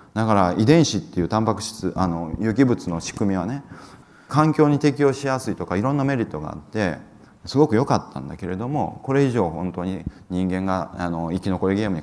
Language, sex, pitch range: Japanese, male, 85-120 Hz